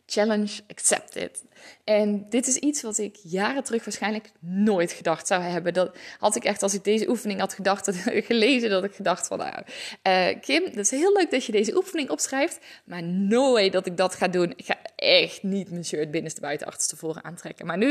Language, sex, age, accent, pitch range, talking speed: Dutch, female, 20-39, Dutch, 185-245 Hz, 210 wpm